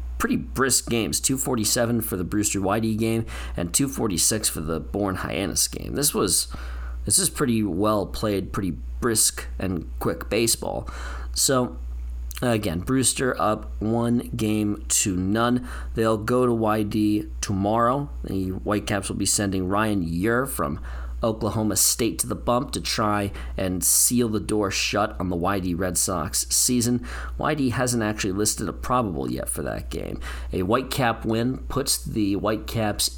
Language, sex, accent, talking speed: English, male, American, 150 wpm